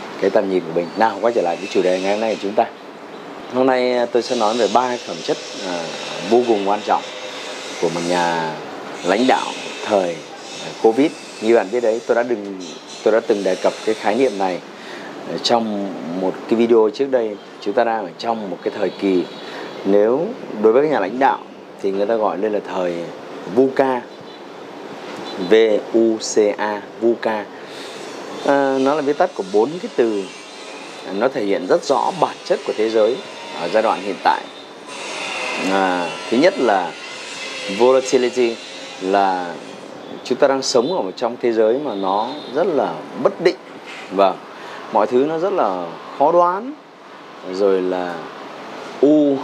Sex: male